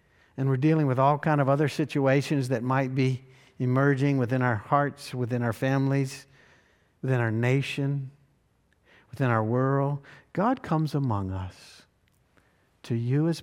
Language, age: English, 60-79